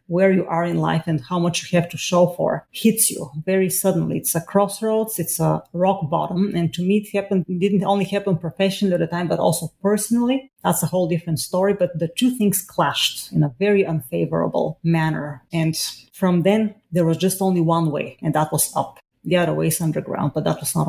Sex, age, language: female, 30-49, English